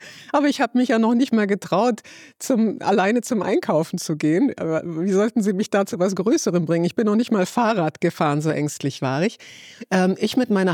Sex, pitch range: female, 150-190 Hz